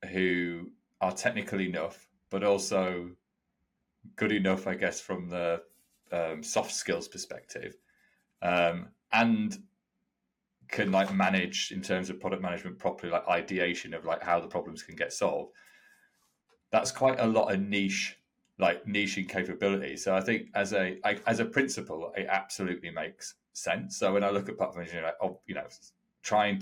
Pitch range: 90-105 Hz